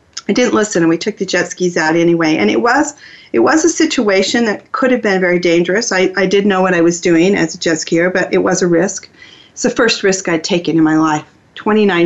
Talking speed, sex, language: 255 wpm, female, English